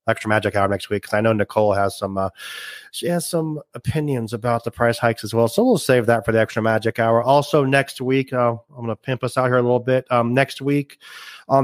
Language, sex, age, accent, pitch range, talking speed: English, male, 30-49, American, 110-135 Hz, 245 wpm